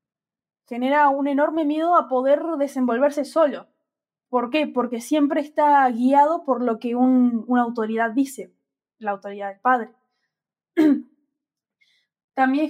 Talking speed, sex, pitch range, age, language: 120 wpm, female, 230-280 Hz, 10-29, Spanish